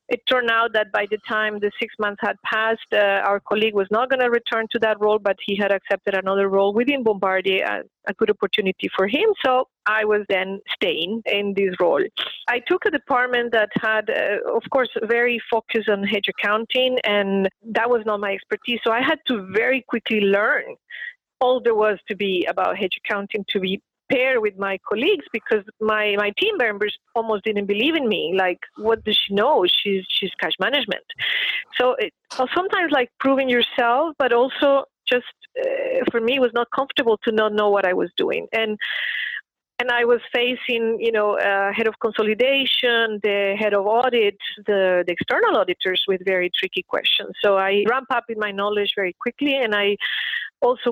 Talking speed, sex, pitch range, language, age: 190 wpm, female, 205-250 Hz, English, 40-59